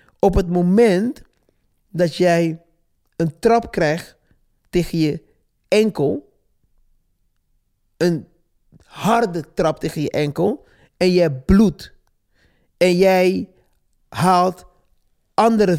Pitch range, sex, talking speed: 165-205 Hz, male, 90 wpm